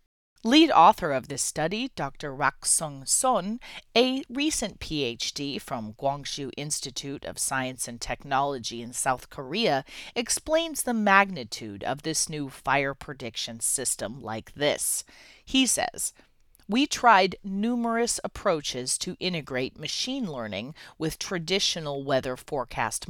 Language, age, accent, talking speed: English, 30-49, American, 120 wpm